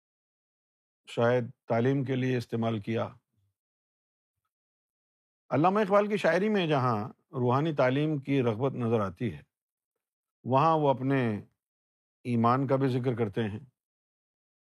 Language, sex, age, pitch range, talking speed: Urdu, male, 50-69, 110-135 Hz, 115 wpm